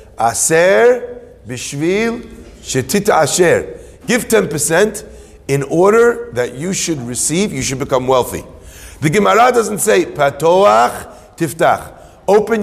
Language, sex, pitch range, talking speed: English, male, 135-210 Hz, 110 wpm